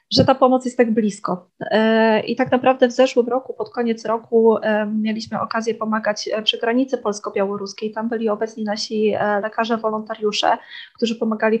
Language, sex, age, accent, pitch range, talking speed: Polish, female, 20-39, native, 215-240 Hz, 145 wpm